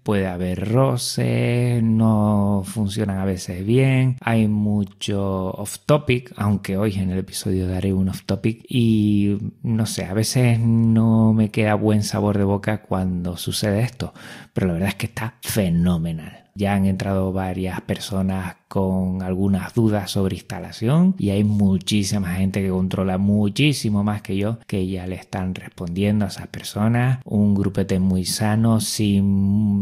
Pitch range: 95-110 Hz